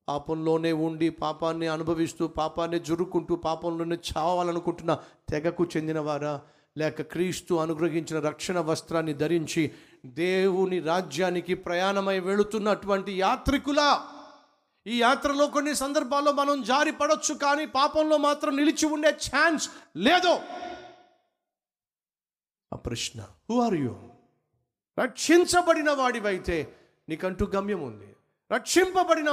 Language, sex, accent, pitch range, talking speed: Telugu, male, native, 150-220 Hz, 80 wpm